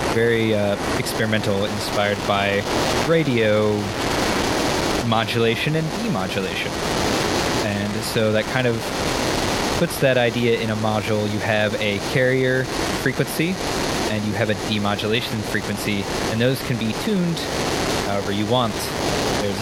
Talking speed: 120 wpm